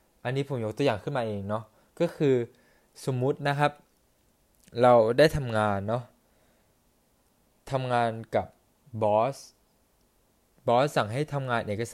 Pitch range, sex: 105-140 Hz, male